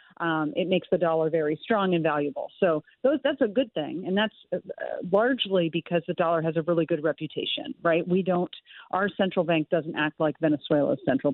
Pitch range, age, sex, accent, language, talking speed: 160-195 Hz, 40-59, female, American, English, 200 wpm